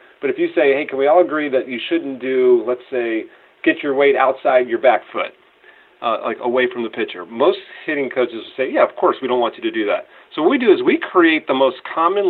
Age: 40-59